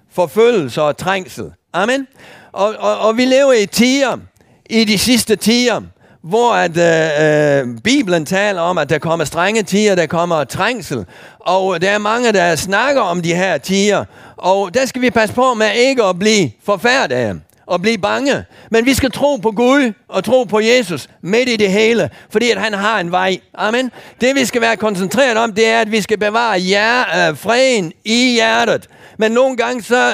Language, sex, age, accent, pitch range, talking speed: Danish, male, 50-69, German, 170-230 Hz, 185 wpm